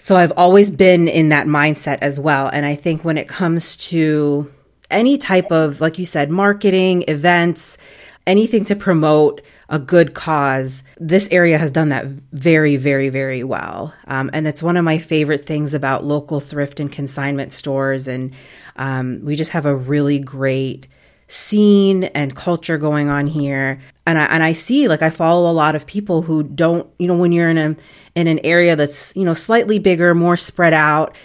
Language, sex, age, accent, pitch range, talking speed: English, female, 30-49, American, 140-170 Hz, 190 wpm